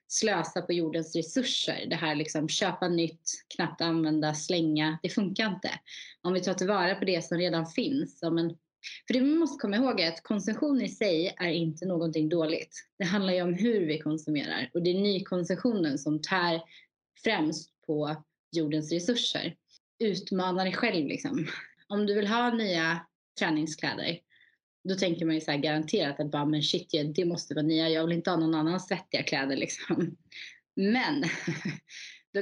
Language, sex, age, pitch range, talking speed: Swedish, female, 20-39, 160-190 Hz, 170 wpm